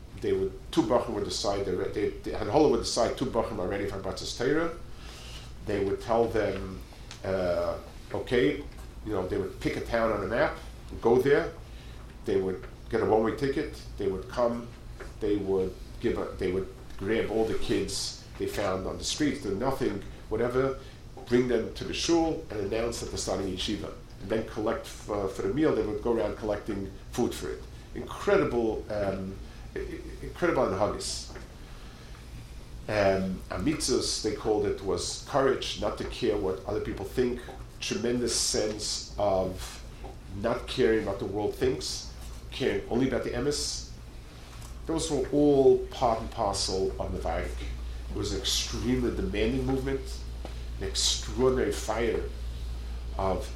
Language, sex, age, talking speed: English, male, 50-69, 160 wpm